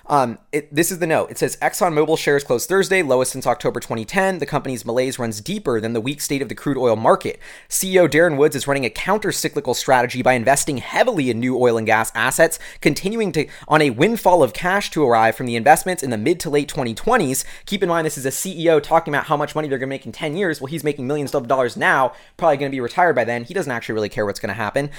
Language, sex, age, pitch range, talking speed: English, male, 20-39, 130-170 Hz, 260 wpm